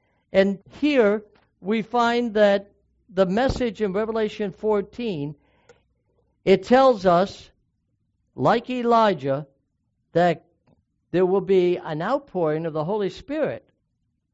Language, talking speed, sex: English, 105 wpm, male